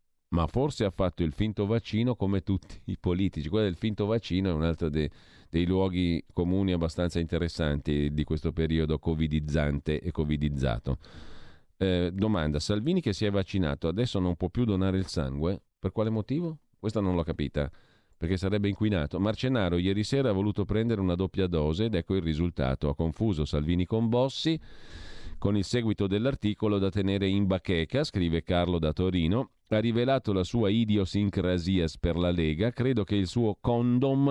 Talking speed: 170 wpm